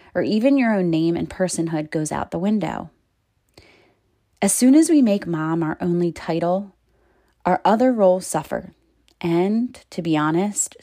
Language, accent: English, American